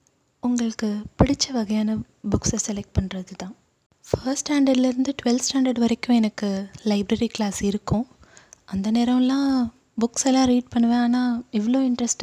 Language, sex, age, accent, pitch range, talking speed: Tamil, female, 20-39, native, 210-250 Hz, 125 wpm